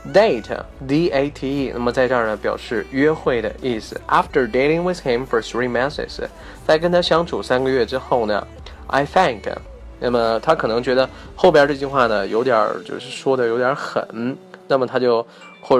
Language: Chinese